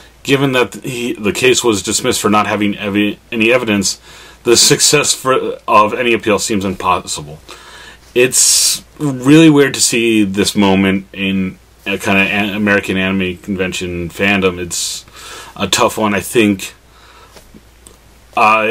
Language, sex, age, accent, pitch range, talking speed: English, male, 30-49, American, 95-110 Hz, 140 wpm